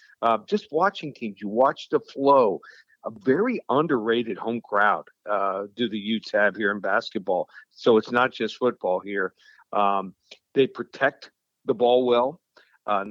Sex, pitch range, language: male, 110-125 Hz, English